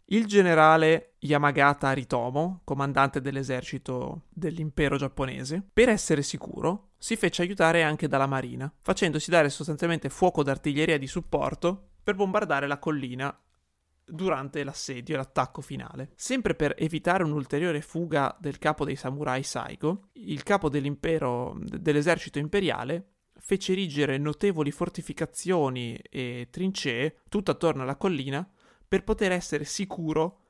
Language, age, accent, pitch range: Italian, 30-49, native, 140-175 Hz